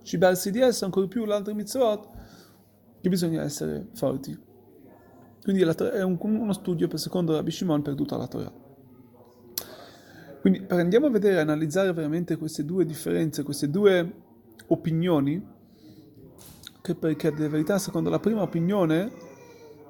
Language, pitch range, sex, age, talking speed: Italian, 155-195 Hz, male, 30-49, 140 wpm